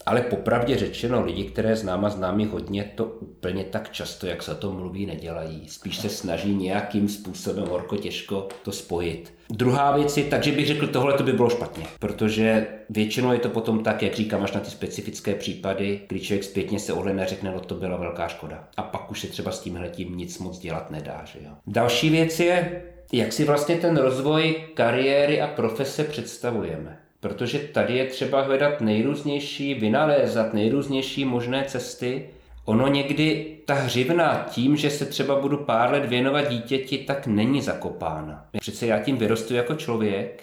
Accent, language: native, Czech